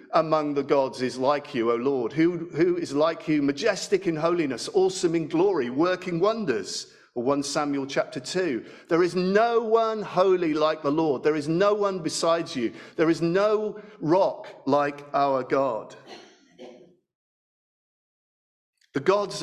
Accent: British